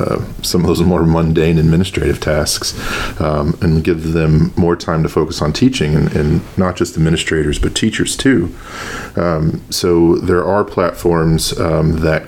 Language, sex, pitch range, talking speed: English, male, 80-90 Hz, 160 wpm